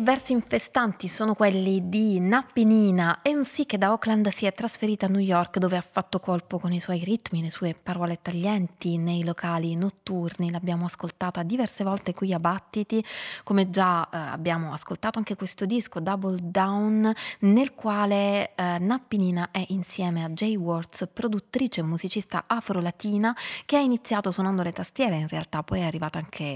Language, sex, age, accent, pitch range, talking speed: Italian, female, 20-39, native, 170-210 Hz, 170 wpm